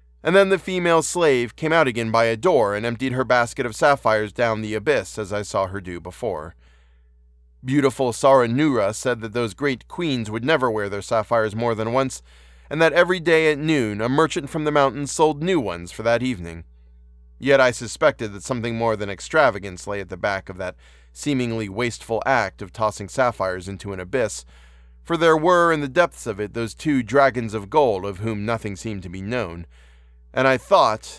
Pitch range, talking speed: 95-135 Hz, 200 wpm